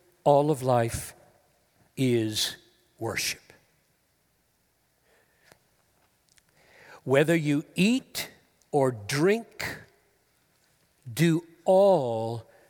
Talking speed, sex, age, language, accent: 55 wpm, male, 60-79, English, American